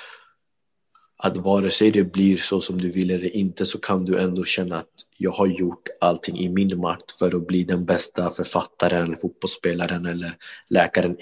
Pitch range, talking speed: 90-105 Hz, 175 wpm